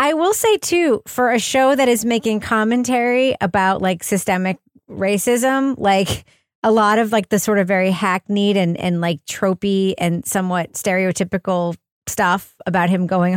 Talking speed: 160 wpm